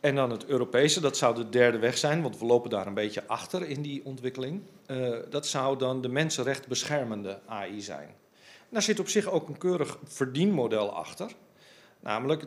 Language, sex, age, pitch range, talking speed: Dutch, male, 40-59, 115-150 Hz, 185 wpm